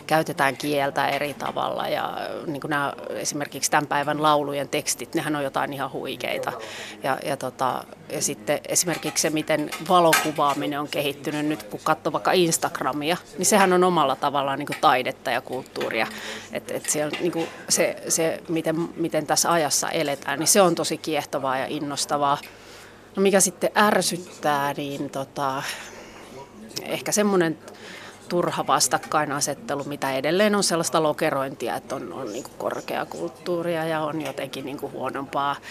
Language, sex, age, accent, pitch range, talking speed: Finnish, female, 30-49, native, 145-170 Hz, 145 wpm